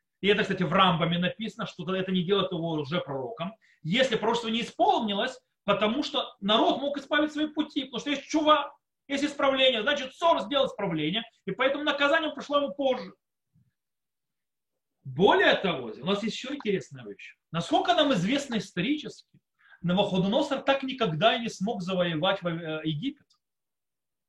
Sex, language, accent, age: male, Russian, native, 30-49